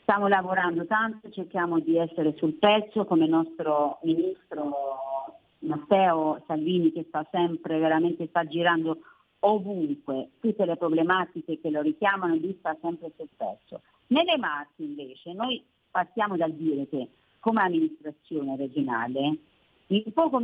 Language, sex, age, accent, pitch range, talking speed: Italian, female, 40-59, native, 155-235 Hz, 135 wpm